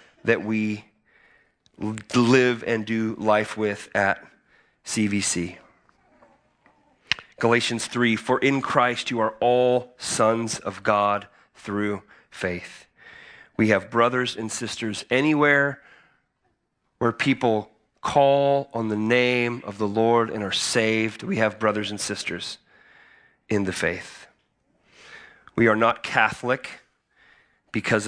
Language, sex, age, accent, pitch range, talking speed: English, male, 30-49, American, 105-125 Hz, 115 wpm